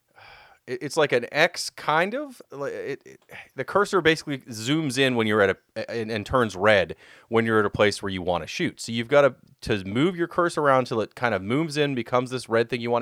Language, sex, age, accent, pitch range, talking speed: English, male, 30-49, American, 105-140 Hz, 240 wpm